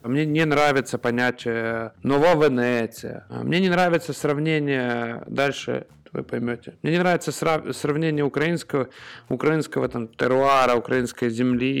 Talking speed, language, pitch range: 115 wpm, Ukrainian, 120-150 Hz